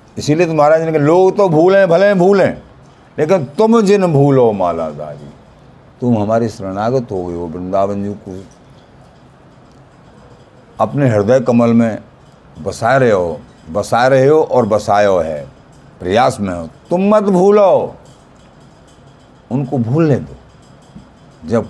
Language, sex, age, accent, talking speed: Hindi, male, 50-69, native, 125 wpm